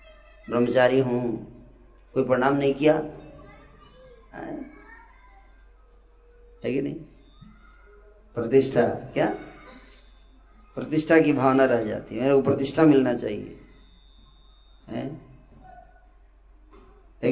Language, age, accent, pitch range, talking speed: Hindi, 20-39, native, 130-205 Hz, 80 wpm